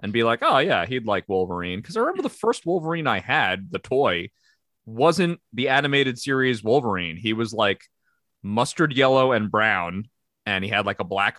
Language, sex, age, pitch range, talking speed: English, male, 30-49, 100-155 Hz, 190 wpm